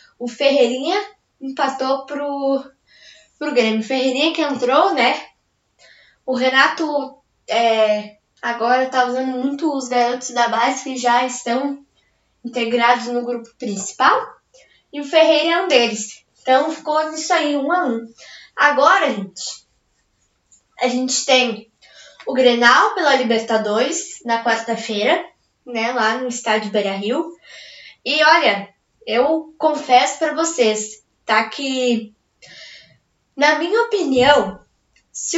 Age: 10-29